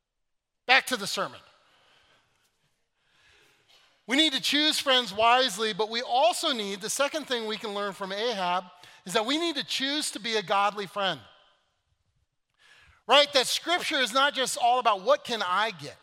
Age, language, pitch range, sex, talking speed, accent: 30-49, English, 170-250 Hz, male, 170 wpm, American